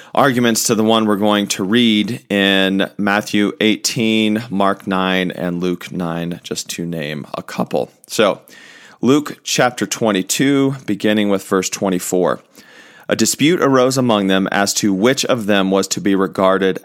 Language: English